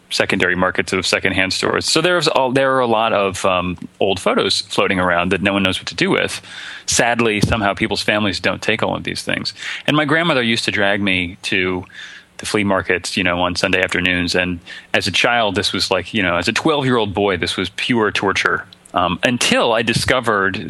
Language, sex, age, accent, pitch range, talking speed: English, male, 30-49, American, 95-120 Hz, 210 wpm